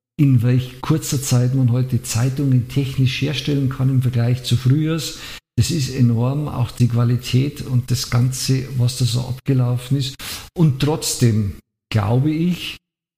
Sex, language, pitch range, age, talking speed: male, German, 125-145 Hz, 50-69, 145 wpm